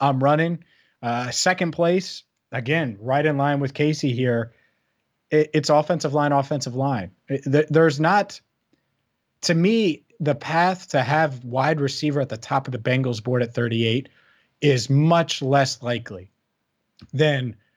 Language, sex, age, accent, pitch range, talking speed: English, male, 30-49, American, 120-150 Hz, 140 wpm